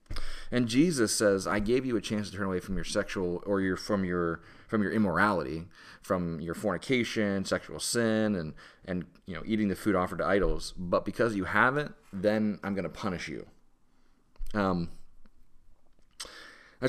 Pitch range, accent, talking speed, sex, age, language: 85-105 Hz, American, 165 wpm, male, 30-49, English